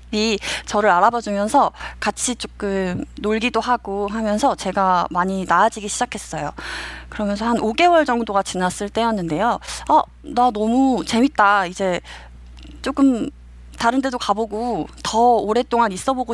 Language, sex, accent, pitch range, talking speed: English, female, Korean, 180-250 Hz, 110 wpm